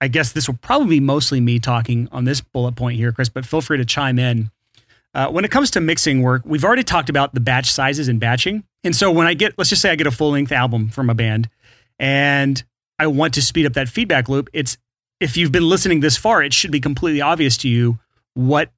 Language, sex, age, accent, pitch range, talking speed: English, male, 30-49, American, 125-155 Hz, 245 wpm